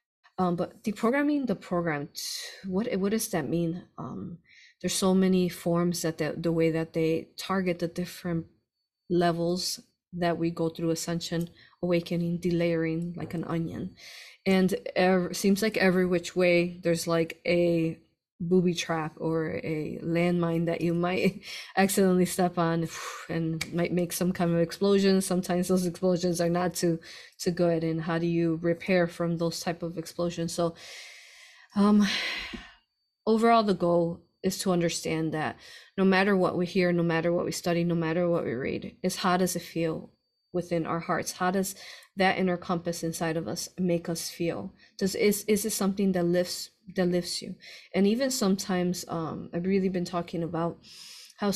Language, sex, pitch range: English, female, 170-190 Hz